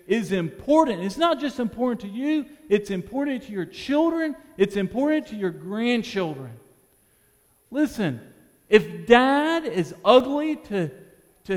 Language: English